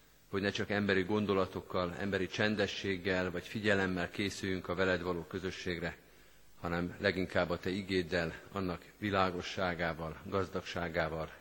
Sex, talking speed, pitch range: male, 115 wpm, 90-115 Hz